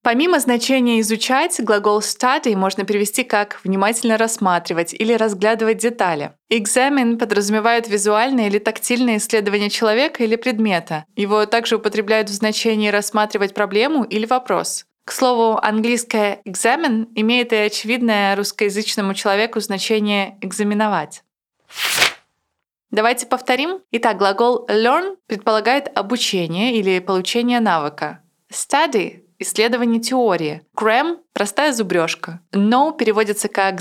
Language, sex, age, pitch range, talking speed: Russian, female, 20-39, 200-240 Hz, 110 wpm